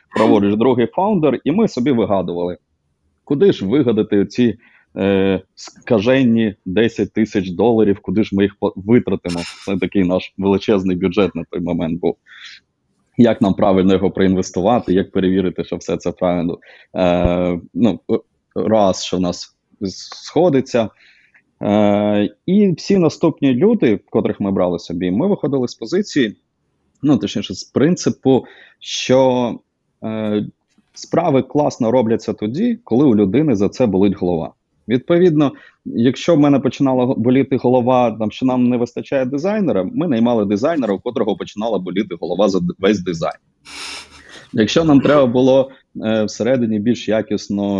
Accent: native